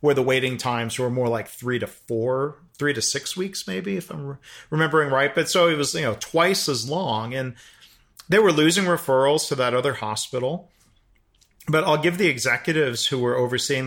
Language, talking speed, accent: English, 200 wpm, American